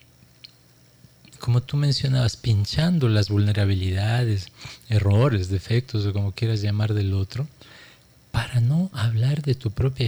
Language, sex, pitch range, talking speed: Spanish, male, 105-135 Hz, 120 wpm